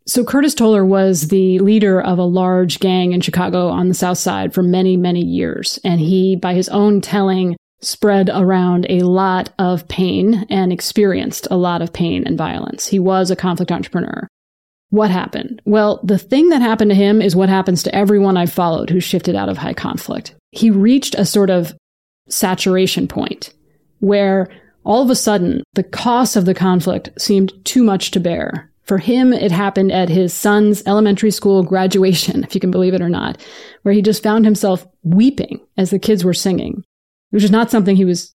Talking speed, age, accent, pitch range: 190 wpm, 30-49, American, 185-215 Hz